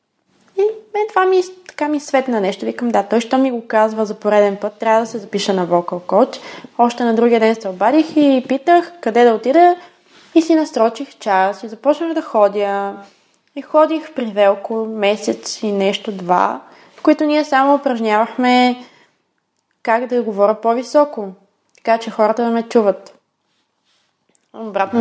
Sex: female